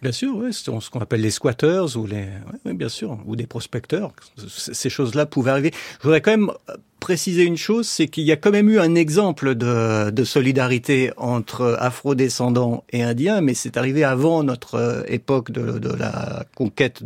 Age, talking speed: 50-69, 190 wpm